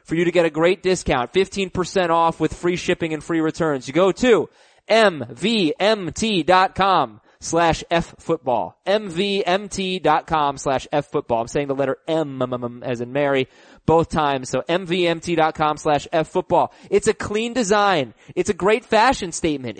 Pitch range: 145-210 Hz